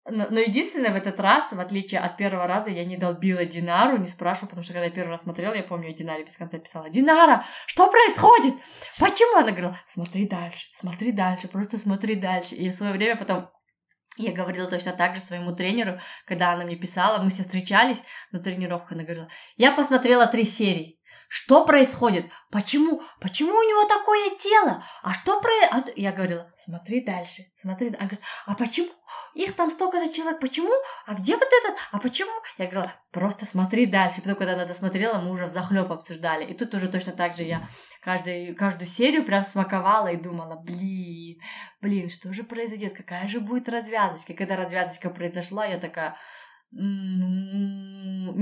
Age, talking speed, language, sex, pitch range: 20-39, 185 wpm, Russian, female, 180-240 Hz